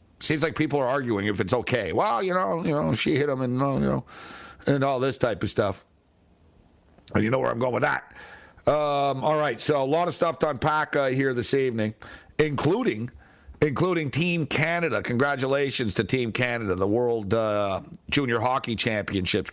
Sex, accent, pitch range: male, American, 125-160 Hz